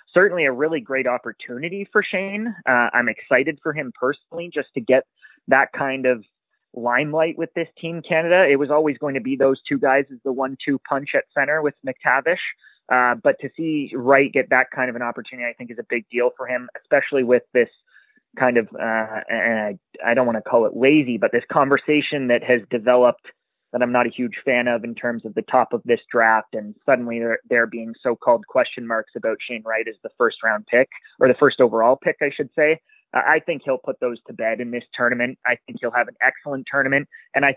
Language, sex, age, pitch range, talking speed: English, male, 30-49, 120-140 Hz, 220 wpm